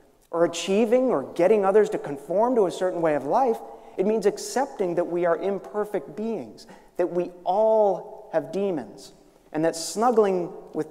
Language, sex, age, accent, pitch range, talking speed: English, male, 40-59, American, 155-210 Hz, 165 wpm